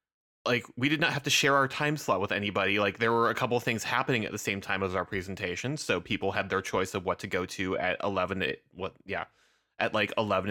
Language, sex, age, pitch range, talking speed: English, male, 20-39, 95-125 Hz, 250 wpm